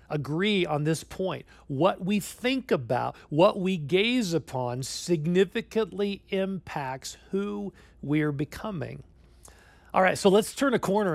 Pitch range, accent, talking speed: 150-200 Hz, American, 130 wpm